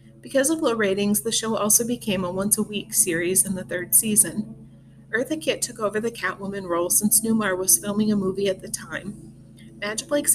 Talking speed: 195 wpm